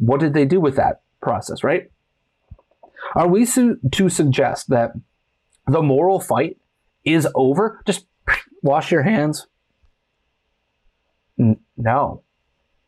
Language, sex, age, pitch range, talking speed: English, male, 30-49, 135-180 Hz, 105 wpm